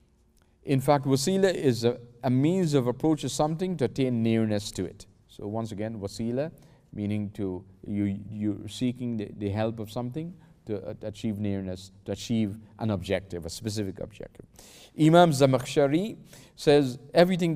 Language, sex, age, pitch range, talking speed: English, male, 40-59, 100-140 Hz, 155 wpm